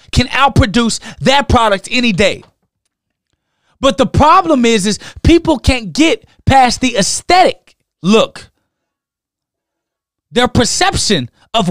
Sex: male